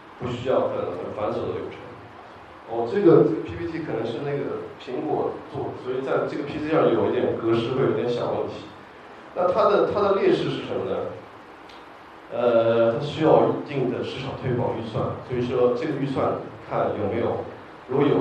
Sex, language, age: male, Chinese, 20-39